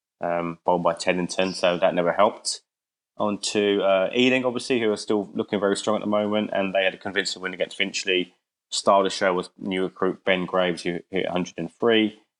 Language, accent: English, British